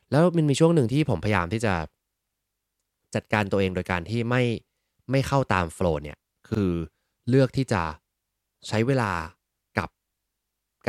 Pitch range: 90-115 Hz